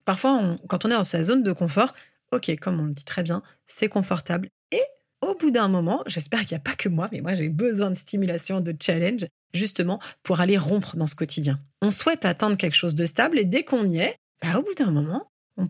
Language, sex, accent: French, female, French